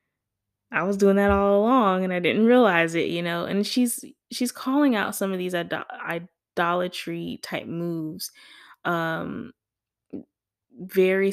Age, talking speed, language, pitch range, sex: 20-39, 140 wpm, English, 165-190 Hz, female